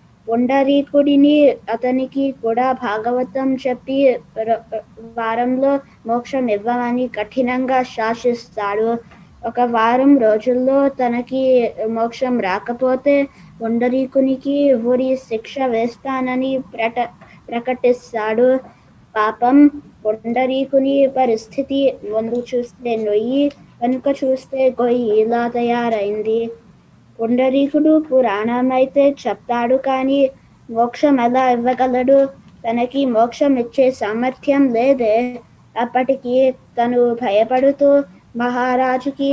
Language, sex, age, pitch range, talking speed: Telugu, female, 20-39, 230-265 Hz, 75 wpm